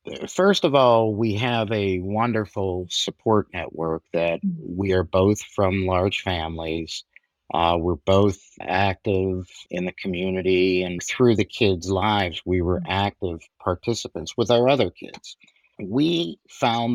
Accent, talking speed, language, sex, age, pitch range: American, 135 wpm, English, male, 50-69, 95-115 Hz